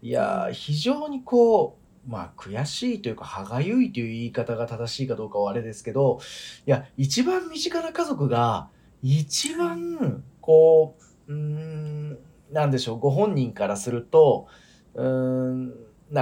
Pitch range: 120-190 Hz